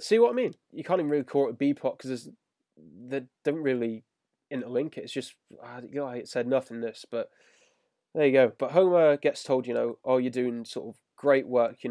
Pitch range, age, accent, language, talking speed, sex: 115-140 Hz, 10-29, British, English, 220 wpm, male